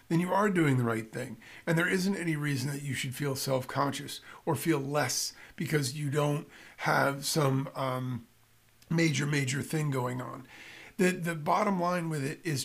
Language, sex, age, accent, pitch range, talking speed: English, male, 50-69, American, 135-170 Hz, 180 wpm